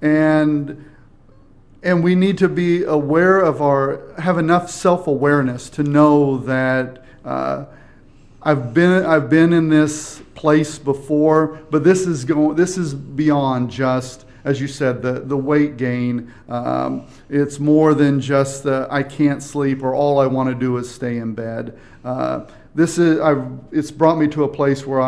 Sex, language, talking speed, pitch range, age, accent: male, English, 165 wpm, 135-155 Hz, 40-59, American